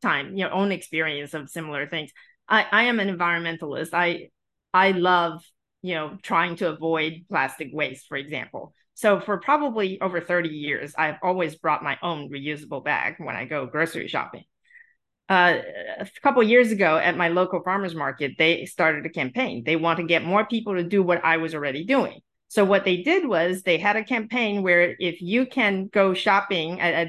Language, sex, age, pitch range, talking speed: English, female, 40-59, 170-255 Hz, 195 wpm